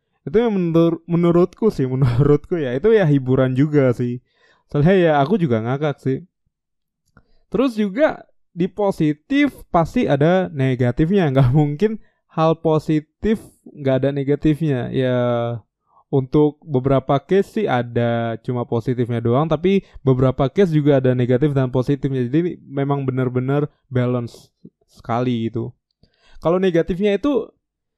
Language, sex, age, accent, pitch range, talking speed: Indonesian, male, 20-39, native, 130-165 Hz, 125 wpm